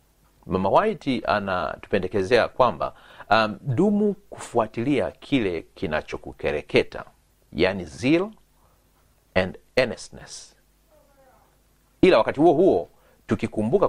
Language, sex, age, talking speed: Swahili, male, 40-59, 80 wpm